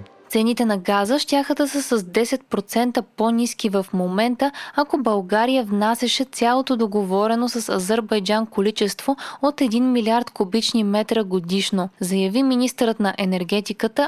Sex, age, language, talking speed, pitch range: female, 20-39, Bulgarian, 125 wpm, 205-255 Hz